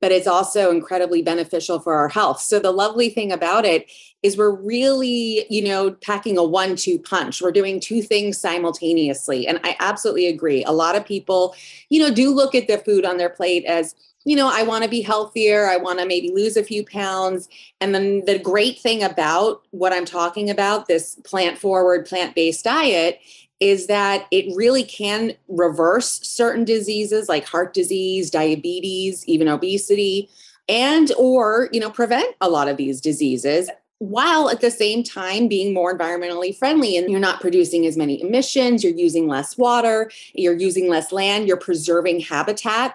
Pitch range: 175-225 Hz